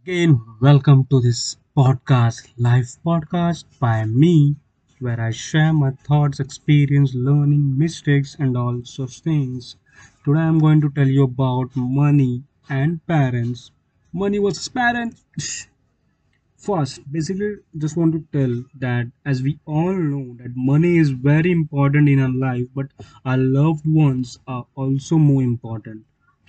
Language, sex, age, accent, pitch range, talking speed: English, male, 20-39, Indian, 130-155 Hz, 140 wpm